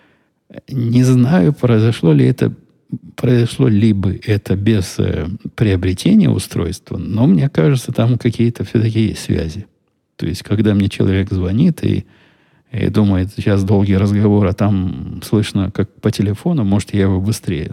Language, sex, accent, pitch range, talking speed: Russian, male, native, 95-110 Hz, 145 wpm